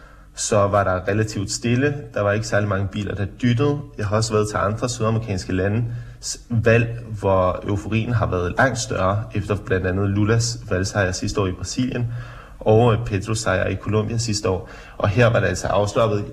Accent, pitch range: native, 100-120 Hz